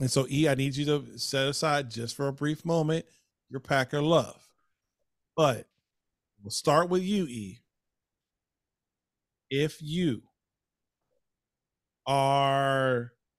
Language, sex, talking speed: English, male, 115 wpm